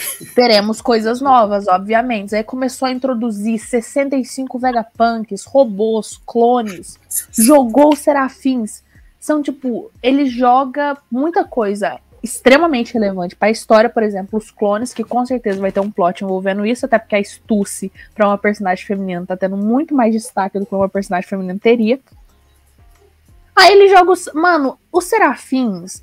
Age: 20-39